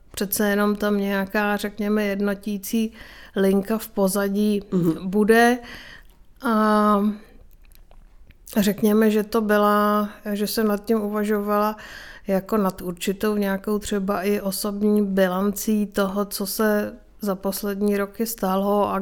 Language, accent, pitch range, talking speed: Czech, native, 195-210 Hz, 115 wpm